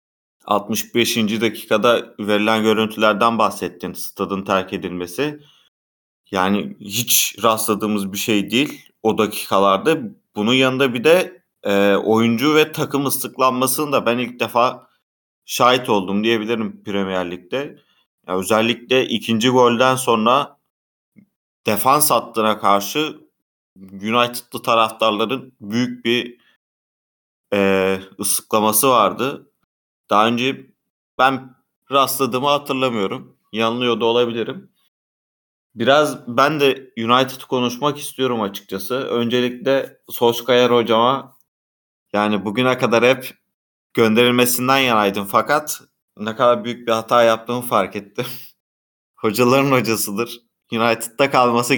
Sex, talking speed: male, 100 wpm